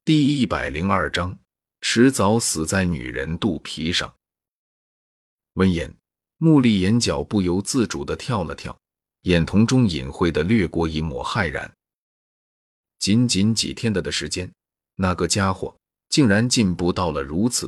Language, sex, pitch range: Chinese, male, 85-110 Hz